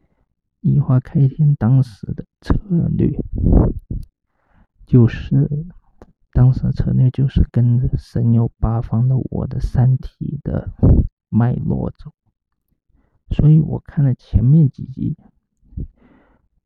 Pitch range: 110-135 Hz